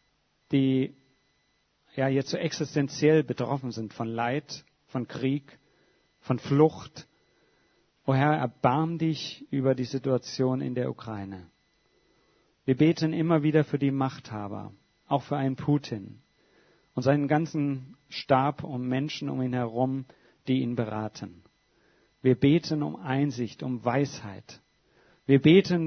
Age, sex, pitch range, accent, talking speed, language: 50-69, male, 120-145 Hz, German, 125 wpm, German